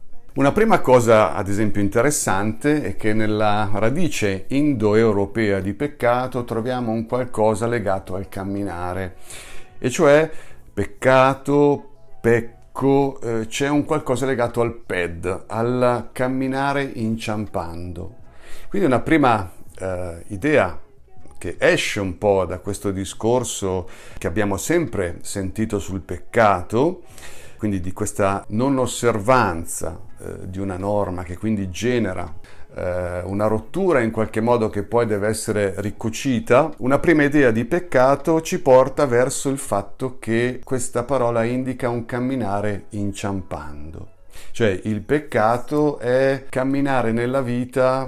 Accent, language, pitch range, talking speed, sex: native, Italian, 100-130 Hz, 120 wpm, male